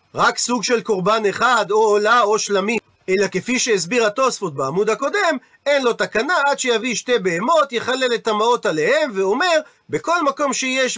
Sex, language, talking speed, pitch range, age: male, Hebrew, 165 wpm, 205-265 Hz, 40-59